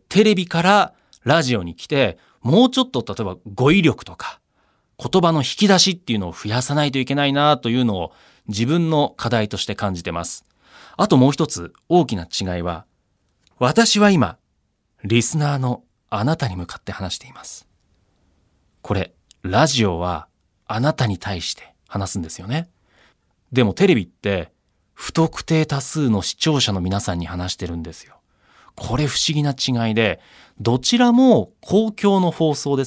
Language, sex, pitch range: Japanese, male, 100-160 Hz